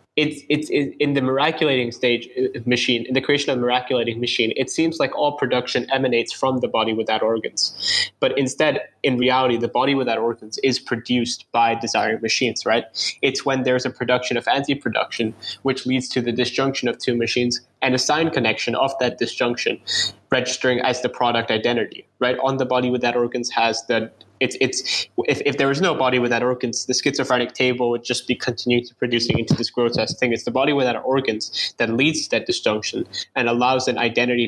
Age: 10-29